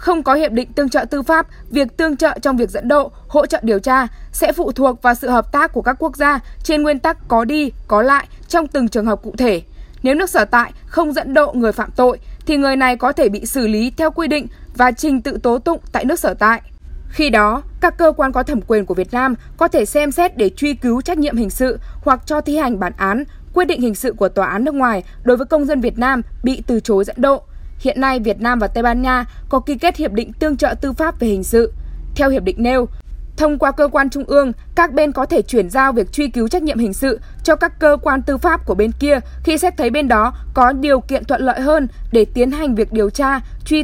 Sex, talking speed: female, 260 wpm